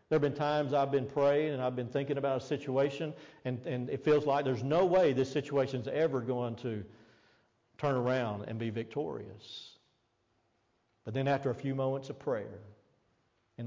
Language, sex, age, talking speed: English, male, 50-69, 180 wpm